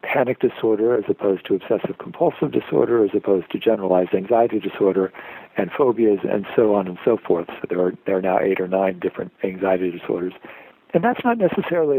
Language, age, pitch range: English, 60-79, 100-135 Hz